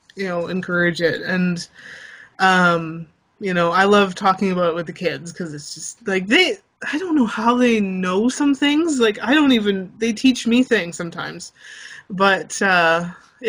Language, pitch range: English, 175-210 Hz